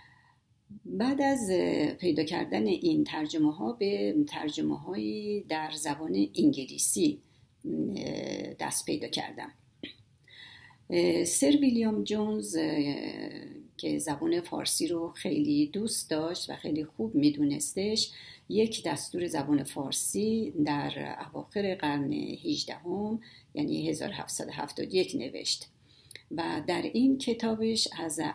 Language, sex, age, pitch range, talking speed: Persian, female, 50-69, 150-230 Hz, 95 wpm